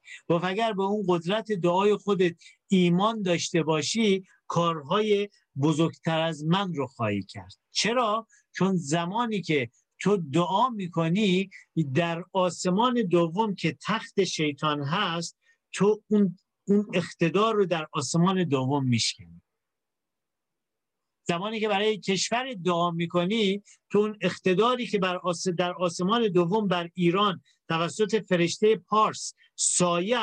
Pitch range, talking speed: 165-205 Hz, 115 wpm